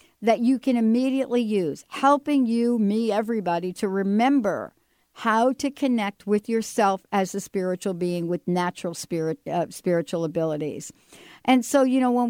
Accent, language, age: American, English, 60-79